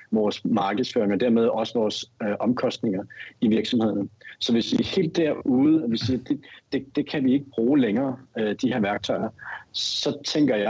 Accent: native